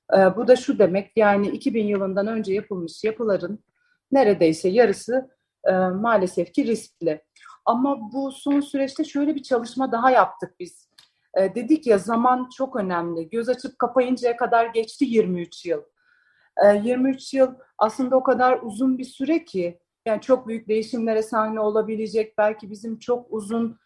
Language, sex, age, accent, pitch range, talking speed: Turkish, female, 40-59, native, 215-260 Hz, 150 wpm